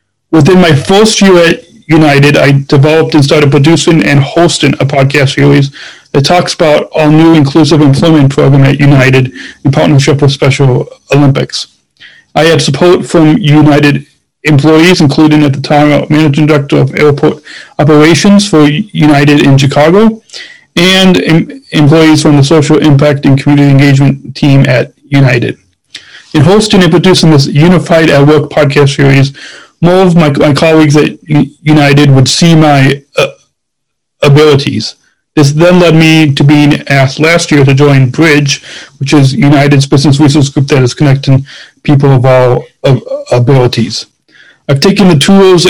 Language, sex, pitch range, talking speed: English, male, 140-160 Hz, 150 wpm